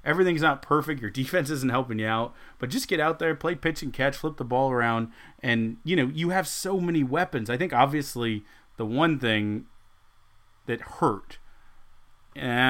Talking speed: 185 wpm